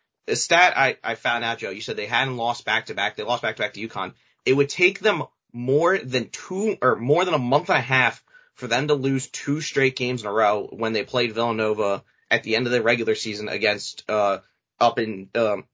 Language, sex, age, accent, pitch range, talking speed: English, male, 30-49, American, 115-135 Hz, 240 wpm